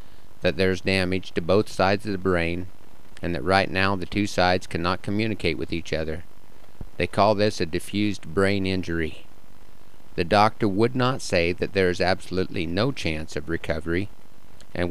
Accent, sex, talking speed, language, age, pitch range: American, male, 175 wpm, English, 50-69, 85-100 Hz